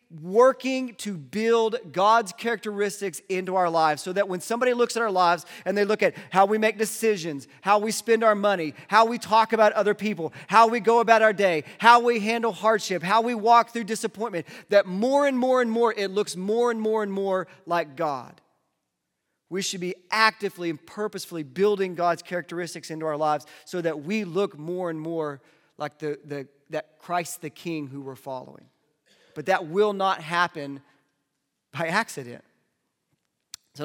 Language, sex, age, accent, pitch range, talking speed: English, male, 40-59, American, 145-215 Hz, 180 wpm